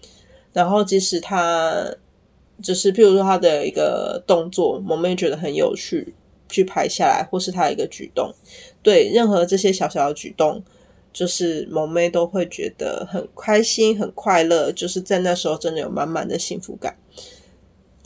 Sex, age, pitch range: female, 20-39, 170-215 Hz